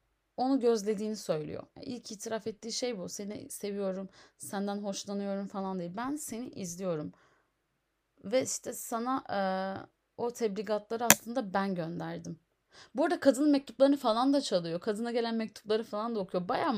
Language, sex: Turkish, female